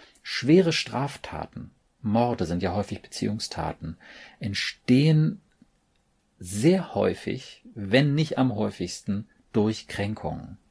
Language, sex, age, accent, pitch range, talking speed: German, male, 40-59, German, 100-125 Hz, 90 wpm